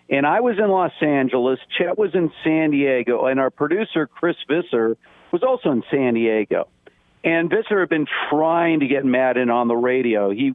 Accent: American